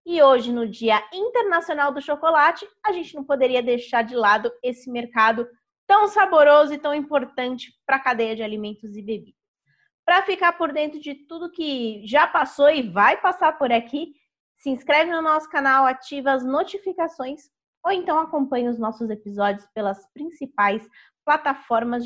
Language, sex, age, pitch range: Portuguese, female, 20-39, 240-315 Hz